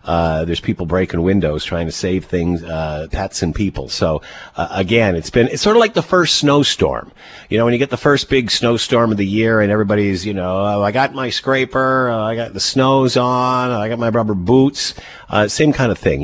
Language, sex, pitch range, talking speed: English, male, 85-110 Hz, 235 wpm